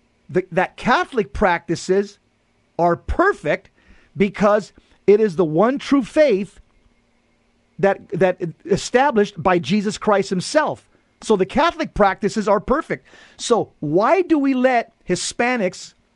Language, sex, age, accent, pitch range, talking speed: English, male, 40-59, American, 185-255 Hz, 115 wpm